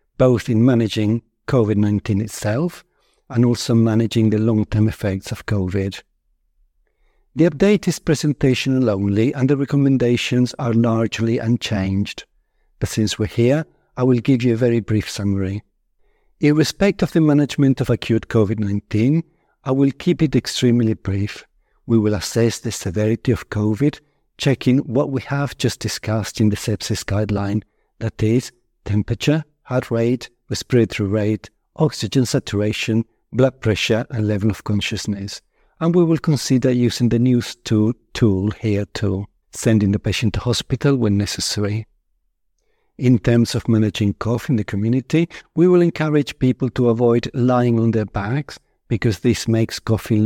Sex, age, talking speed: male, 60-79, 145 wpm